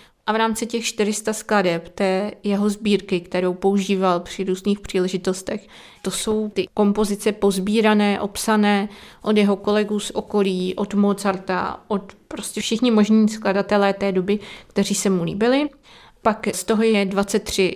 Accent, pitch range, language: native, 190-210 Hz, Czech